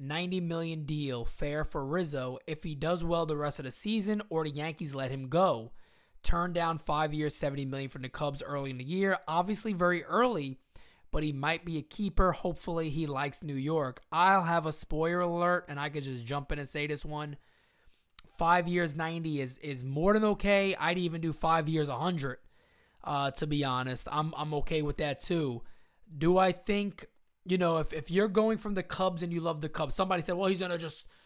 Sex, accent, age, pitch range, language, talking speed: male, American, 20-39, 150-185 Hz, English, 215 wpm